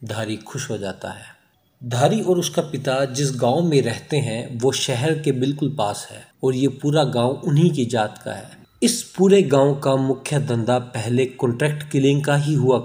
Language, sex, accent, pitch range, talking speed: Hindi, male, native, 115-140 Hz, 190 wpm